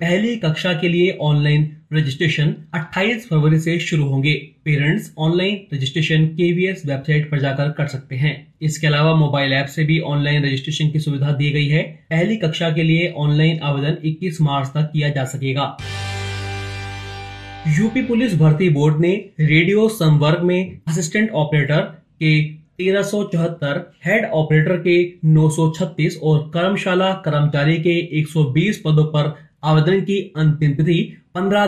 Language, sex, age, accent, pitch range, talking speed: Hindi, male, 30-49, native, 145-175 Hz, 140 wpm